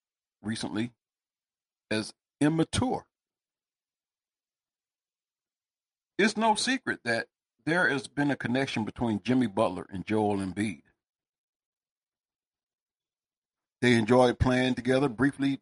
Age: 50-69